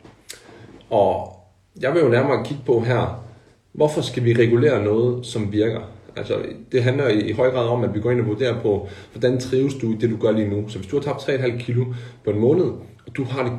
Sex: male